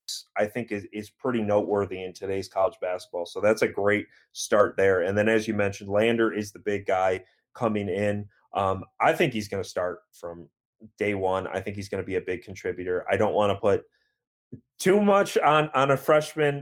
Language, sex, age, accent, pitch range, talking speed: English, male, 30-49, American, 95-120 Hz, 210 wpm